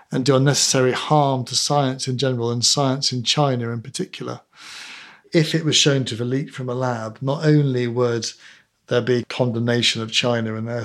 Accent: British